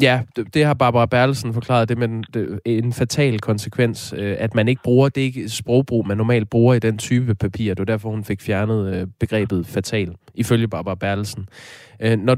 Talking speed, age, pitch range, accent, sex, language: 185 wpm, 20-39, 105-125 Hz, native, male, Danish